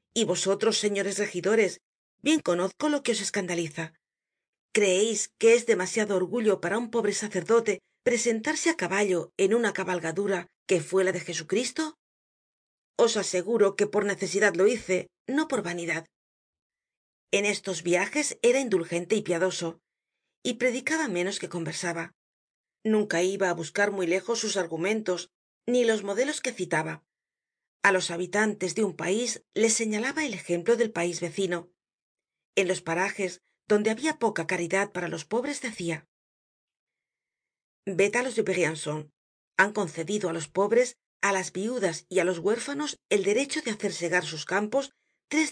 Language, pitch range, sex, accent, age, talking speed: Spanish, 175-230 Hz, female, Spanish, 40-59, 150 wpm